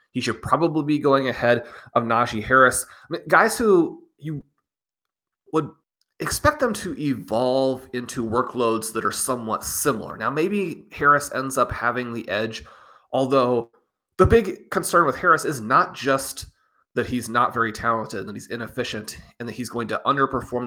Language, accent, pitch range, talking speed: English, American, 115-140 Hz, 165 wpm